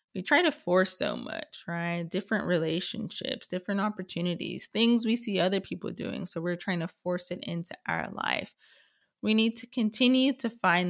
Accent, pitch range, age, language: American, 180-265 Hz, 20-39, English